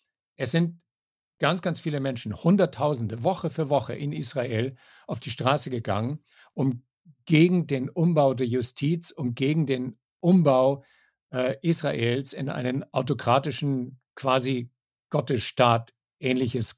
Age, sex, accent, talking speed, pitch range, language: 60-79, male, German, 120 wpm, 125-150 Hz, German